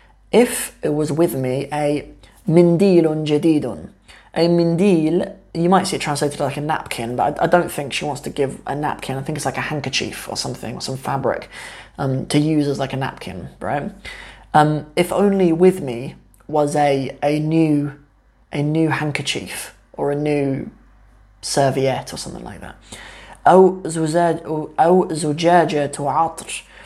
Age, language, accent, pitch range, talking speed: 20-39, English, British, 140-165 Hz, 150 wpm